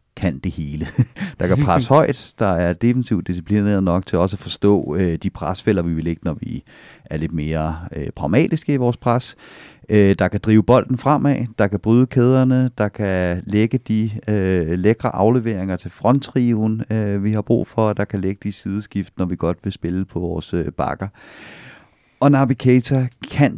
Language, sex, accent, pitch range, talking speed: Danish, male, native, 95-125 Hz, 190 wpm